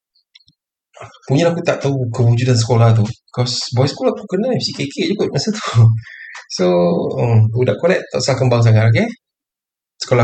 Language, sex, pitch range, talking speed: Malay, male, 110-140 Hz, 160 wpm